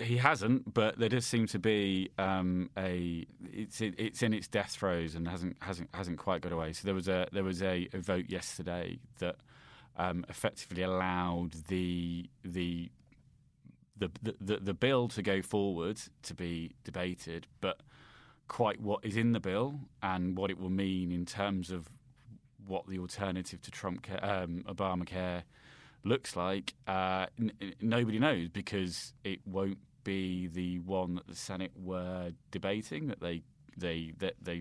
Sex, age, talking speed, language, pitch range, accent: male, 30-49, 170 wpm, English, 90-105 Hz, British